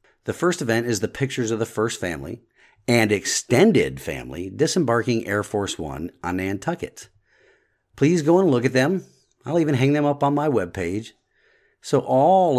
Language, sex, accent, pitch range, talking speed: English, male, American, 95-130 Hz, 170 wpm